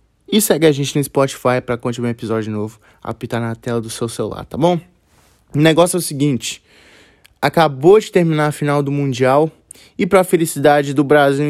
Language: Portuguese